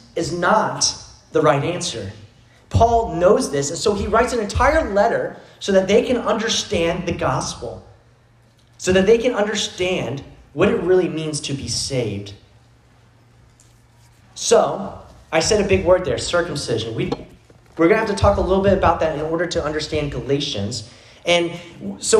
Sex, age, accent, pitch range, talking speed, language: male, 30-49, American, 145-205 Hz, 160 wpm, English